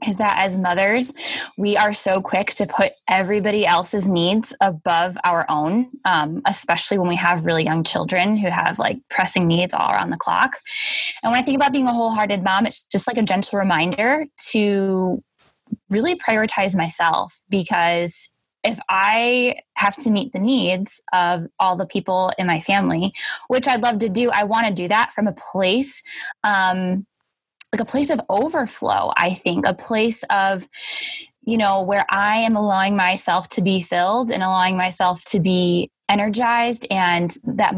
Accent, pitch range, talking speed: American, 180-225 Hz, 175 wpm